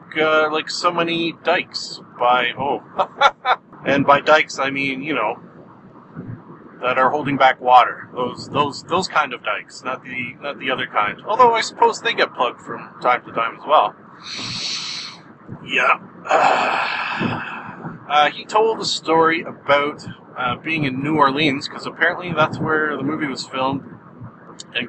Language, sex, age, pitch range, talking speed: English, male, 30-49, 135-195 Hz, 155 wpm